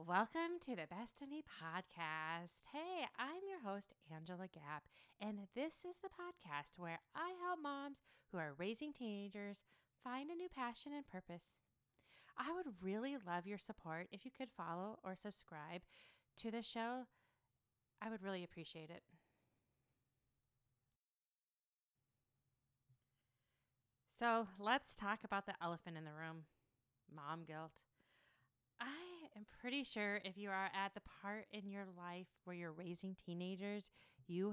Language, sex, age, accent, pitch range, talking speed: English, female, 30-49, American, 165-220 Hz, 140 wpm